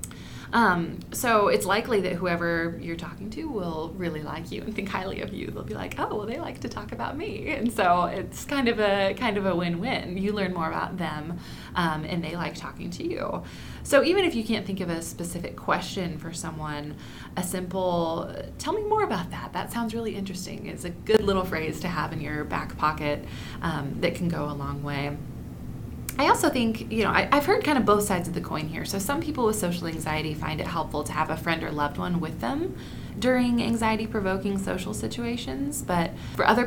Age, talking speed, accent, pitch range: 20-39, 215 wpm, American, 155-205 Hz